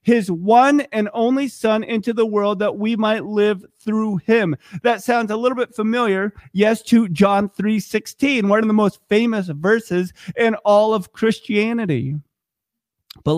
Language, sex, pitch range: English, male, 140-205 Hz